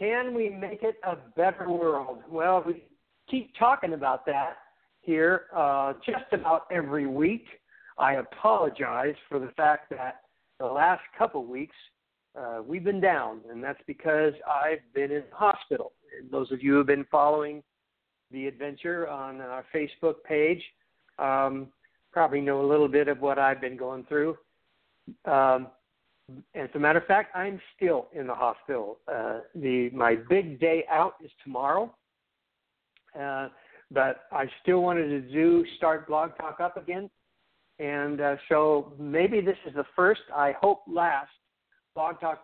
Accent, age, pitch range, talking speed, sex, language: American, 60-79, 140-175 Hz, 155 wpm, male, English